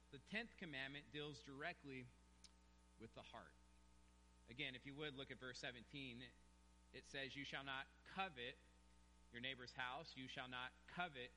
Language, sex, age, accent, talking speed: English, male, 30-49, American, 155 wpm